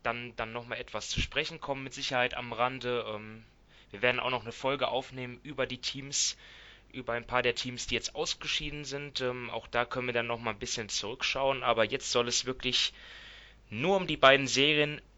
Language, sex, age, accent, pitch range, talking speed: German, male, 20-39, German, 115-135 Hz, 195 wpm